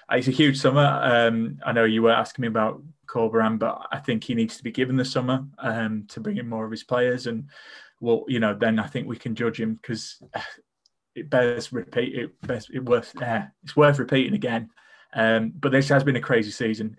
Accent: British